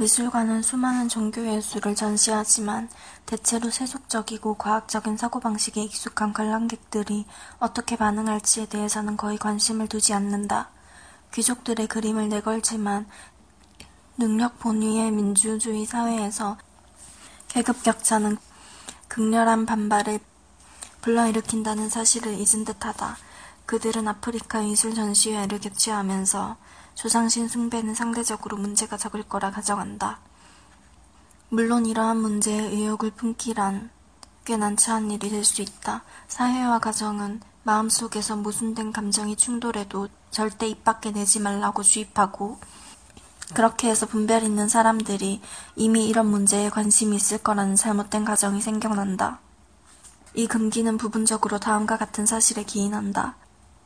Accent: native